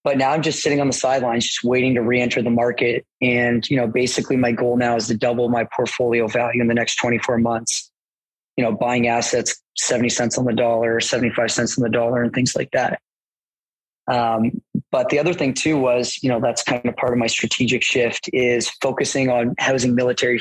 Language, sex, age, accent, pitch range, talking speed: English, male, 20-39, American, 120-130 Hz, 210 wpm